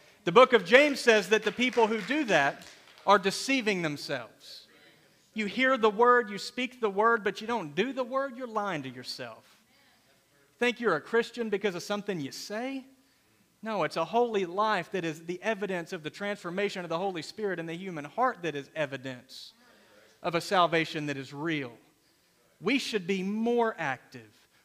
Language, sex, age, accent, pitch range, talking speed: English, male, 40-59, American, 135-210 Hz, 185 wpm